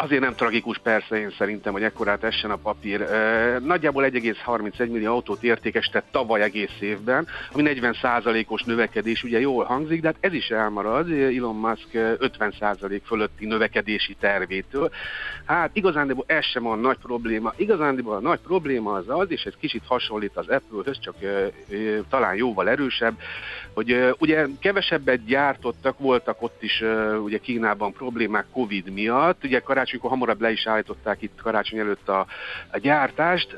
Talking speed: 150 wpm